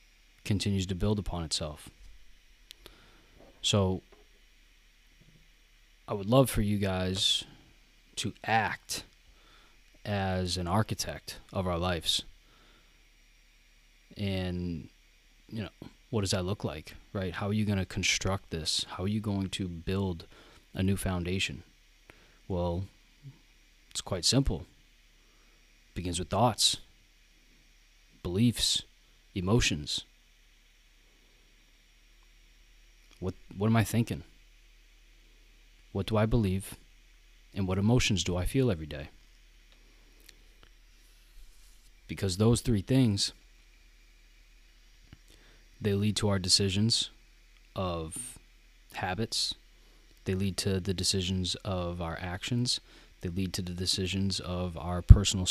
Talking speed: 105 wpm